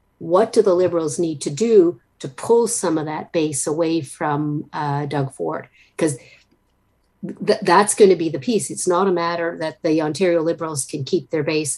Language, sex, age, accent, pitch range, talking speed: English, female, 50-69, American, 155-200 Hz, 185 wpm